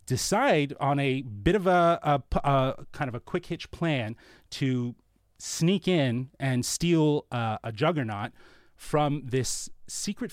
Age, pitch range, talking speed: 30-49, 120-155 Hz, 145 wpm